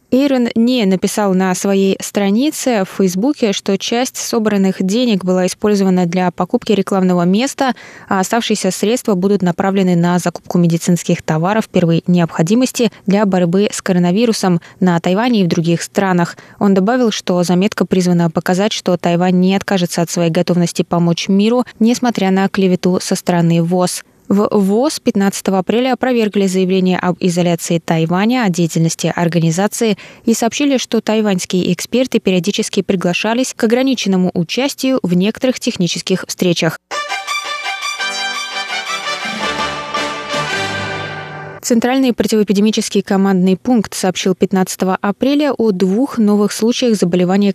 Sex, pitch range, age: female, 180-225 Hz, 20-39